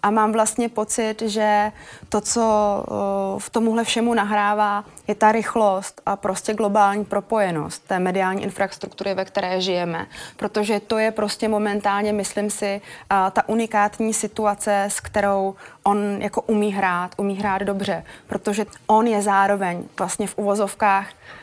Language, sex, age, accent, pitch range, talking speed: Czech, female, 20-39, native, 200-215 Hz, 140 wpm